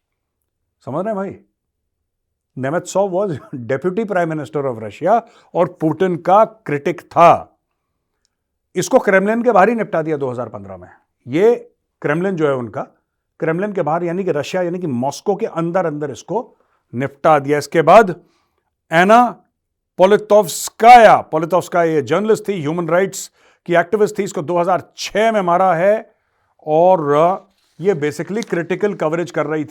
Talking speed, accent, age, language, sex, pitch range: 140 wpm, native, 50-69, Hindi, male, 145-195 Hz